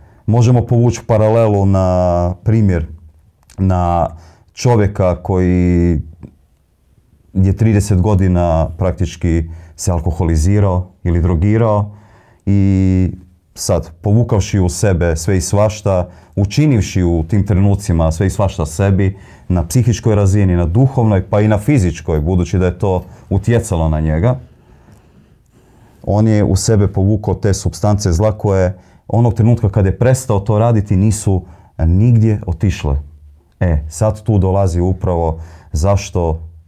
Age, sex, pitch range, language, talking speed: 30-49, male, 85-105 Hz, Croatian, 115 wpm